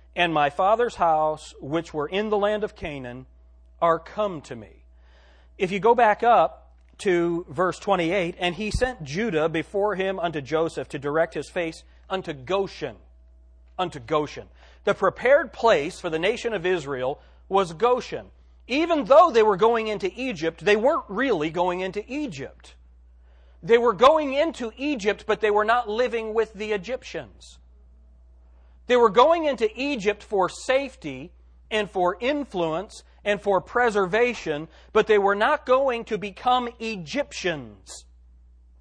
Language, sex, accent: English, male, American